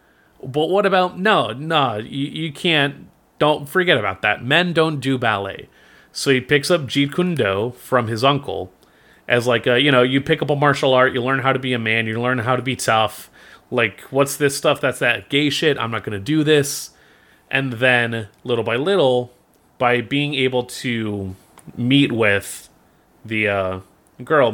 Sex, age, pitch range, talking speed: male, 30-49, 110-140 Hz, 190 wpm